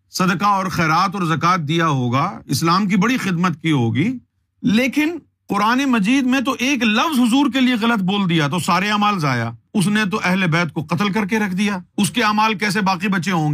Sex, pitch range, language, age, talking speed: male, 160-230 Hz, Urdu, 50-69, 215 wpm